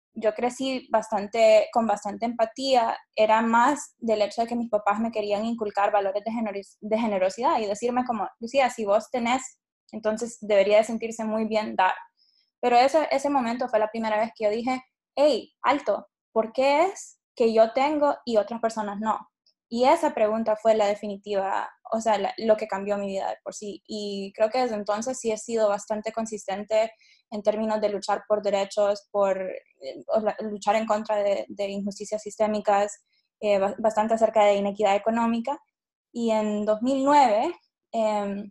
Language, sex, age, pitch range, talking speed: Spanish, female, 10-29, 210-240 Hz, 170 wpm